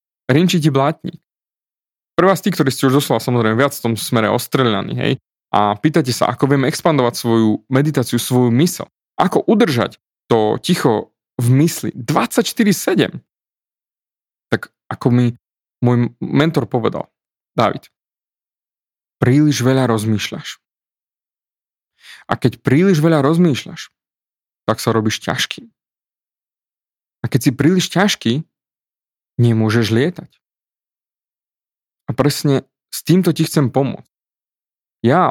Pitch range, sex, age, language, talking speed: 115-145 Hz, male, 30-49, Slovak, 115 wpm